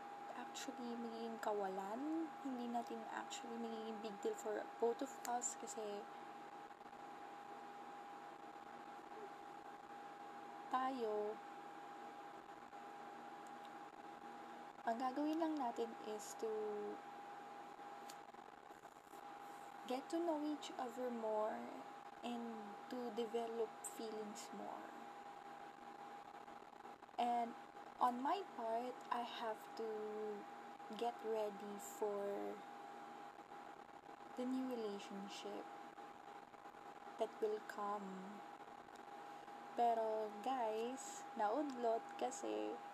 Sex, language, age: female, Filipino, 20-39